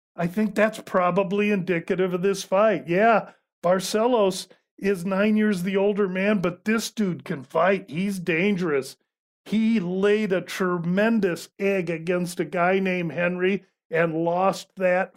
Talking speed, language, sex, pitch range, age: 140 wpm, English, male, 175-210 Hz, 50-69